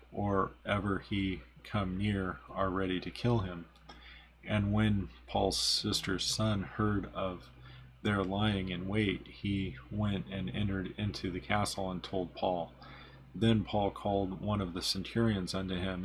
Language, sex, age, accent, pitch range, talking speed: English, male, 30-49, American, 90-105 Hz, 150 wpm